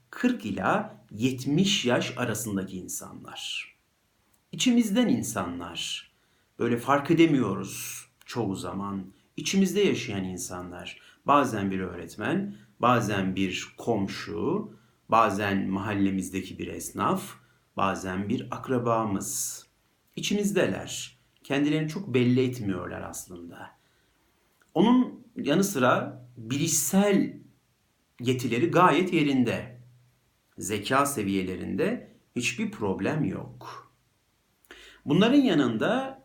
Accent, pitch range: native, 100-165 Hz